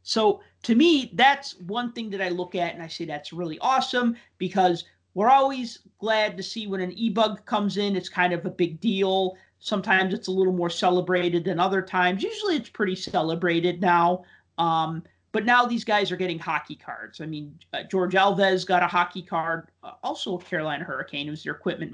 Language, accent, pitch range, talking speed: English, American, 165-205 Hz, 200 wpm